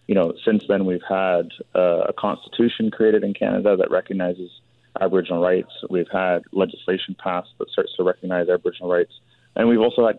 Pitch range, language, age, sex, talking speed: 90-120 Hz, English, 30-49, male, 175 wpm